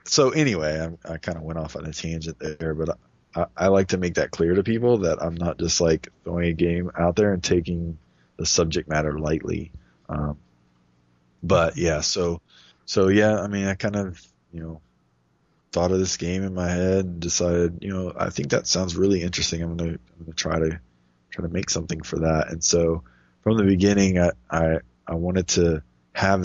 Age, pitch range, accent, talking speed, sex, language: 20-39, 80-90 Hz, American, 205 wpm, male, English